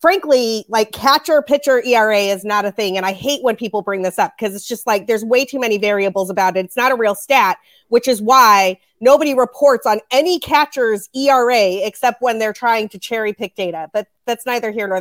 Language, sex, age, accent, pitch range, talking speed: English, female, 30-49, American, 205-265 Hz, 220 wpm